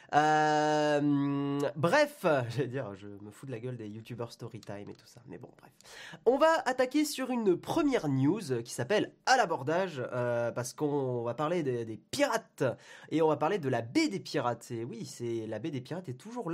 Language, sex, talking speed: French, male, 215 wpm